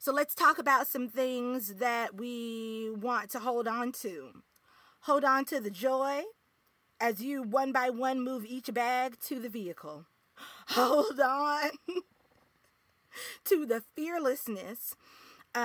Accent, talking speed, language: American, 135 wpm, English